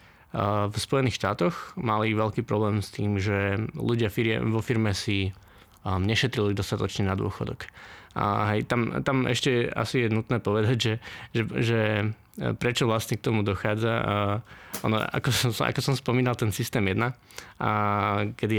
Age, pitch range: 20-39, 105-120 Hz